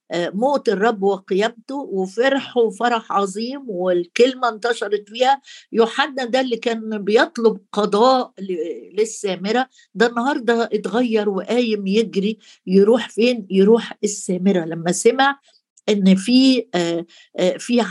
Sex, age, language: female, 50-69, Arabic